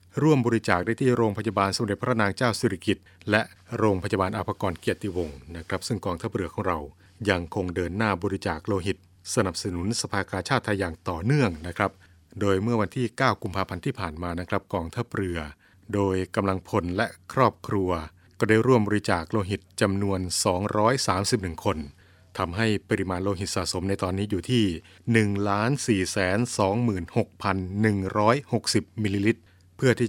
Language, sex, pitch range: Thai, male, 90-110 Hz